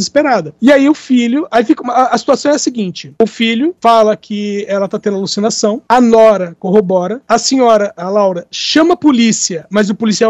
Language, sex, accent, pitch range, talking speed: Portuguese, male, Brazilian, 200-245 Hz, 200 wpm